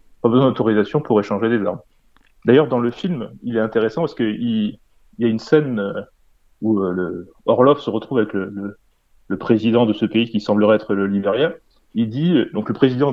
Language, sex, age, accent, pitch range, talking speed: French, male, 30-49, French, 105-145 Hz, 185 wpm